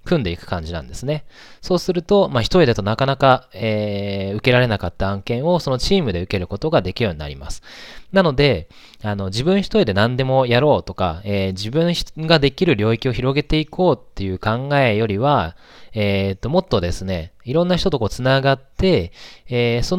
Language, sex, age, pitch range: Japanese, male, 20-39, 100-155 Hz